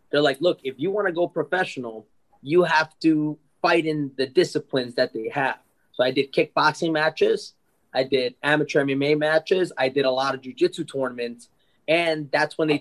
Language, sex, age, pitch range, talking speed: English, male, 20-39, 135-170 Hz, 185 wpm